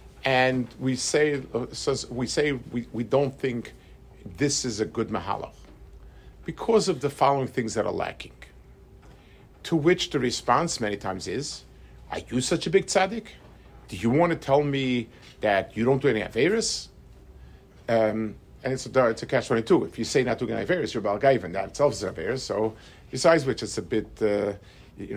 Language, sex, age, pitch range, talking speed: English, male, 50-69, 110-145 Hz, 185 wpm